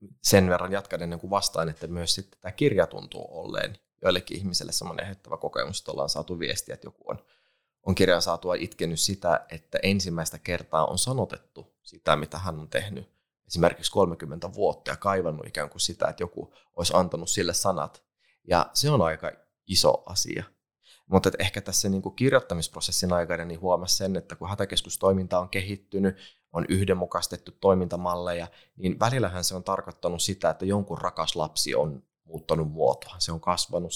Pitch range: 80-100 Hz